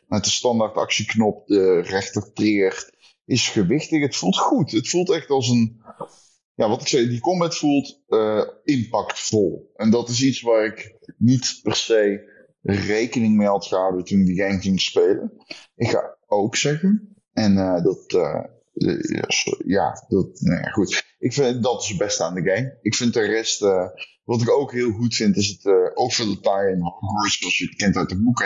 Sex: male